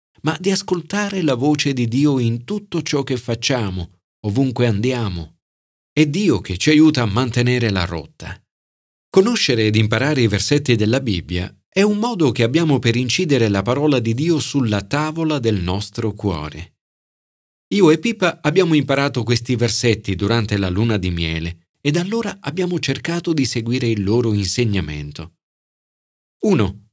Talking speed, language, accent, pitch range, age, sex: 155 wpm, Italian, native, 105-150 Hz, 40-59, male